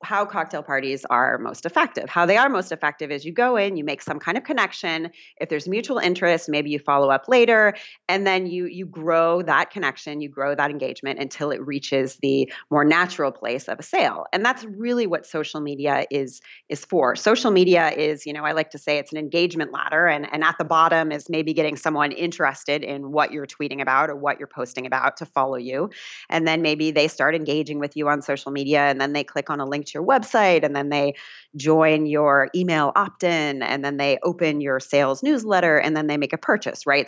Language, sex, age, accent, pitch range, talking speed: English, female, 30-49, American, 140-170 Hz, 225 wpm